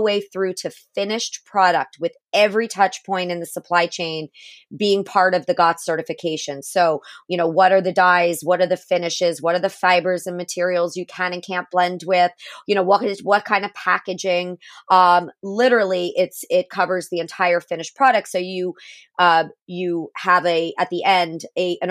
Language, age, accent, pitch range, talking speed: English, 30-49, American, 175-200 Hz, 190 wpm